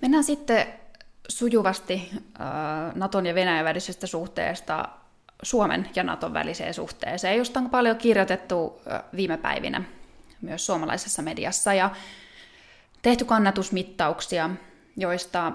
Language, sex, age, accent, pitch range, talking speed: Finnish, female, 20-39, native, 175-220 Hz, 100 wpm